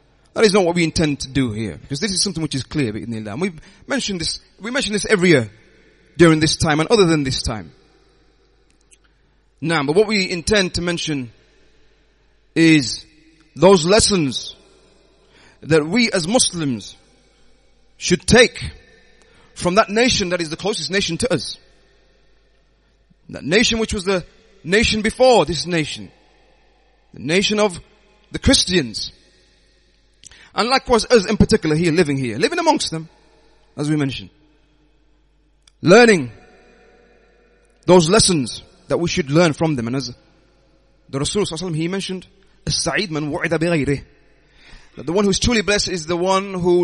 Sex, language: male, English